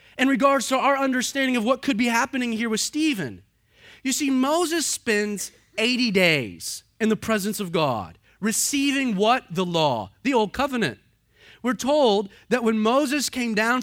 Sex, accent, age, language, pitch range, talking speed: male, American, 30-49, English, 185-265 Hz, 165 wpm